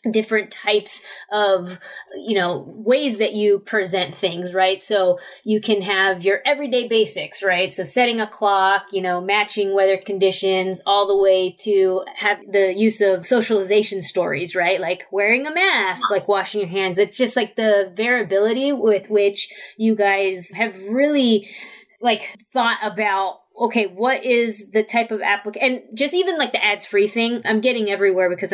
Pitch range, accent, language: 195-235 Hz, American, English